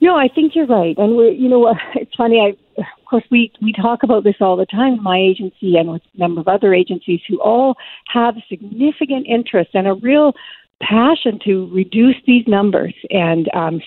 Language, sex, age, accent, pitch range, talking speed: English, female, 50-69, American, 185-250 Hz, 200 wpm